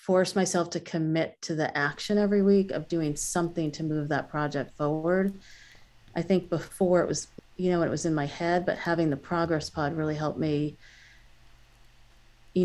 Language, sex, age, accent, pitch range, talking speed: English, female, 40-59, American, 150-175 Hz, 180 wpm